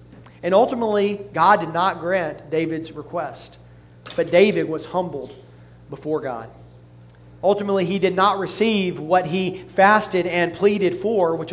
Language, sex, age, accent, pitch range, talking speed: English, male, 40-59, American, 145-195 Hz, 135 wpm